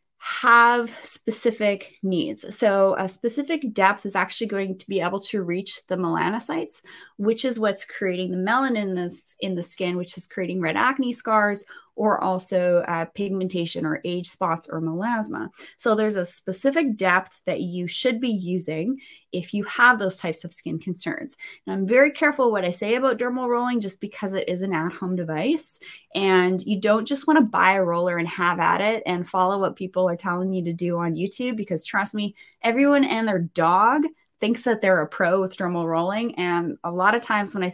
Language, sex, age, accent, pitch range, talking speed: English, female, 20-39, American, 180-235 Hz, 195 wpm